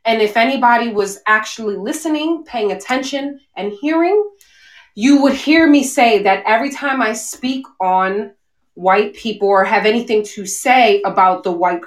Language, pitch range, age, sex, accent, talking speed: English, 215-295 Hz, 20-39, female, American, 155 wpm